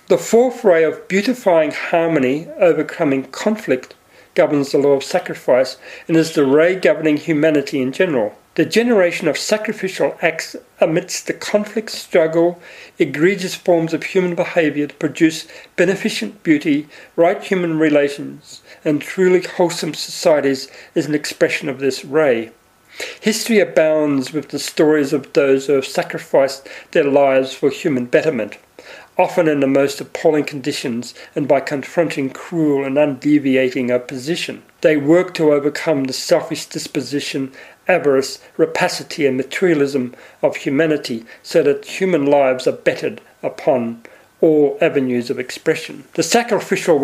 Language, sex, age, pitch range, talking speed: English, male, 40-59, 140-180 Hz, 135 wpm